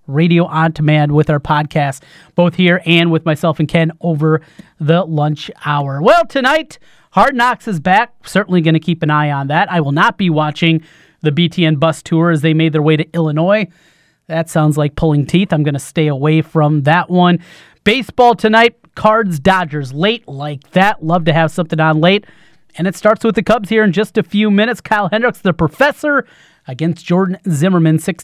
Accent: American